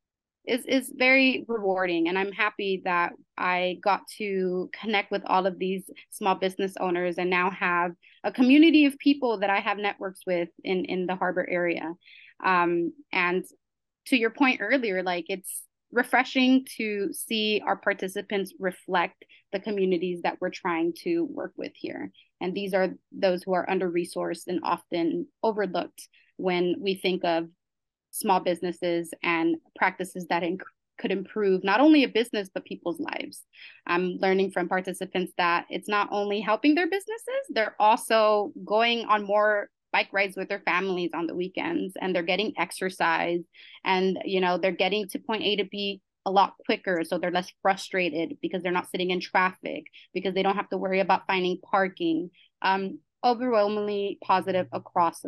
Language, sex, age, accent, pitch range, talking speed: English, female, 20-39, American, 180-210 Hz, 165 wpm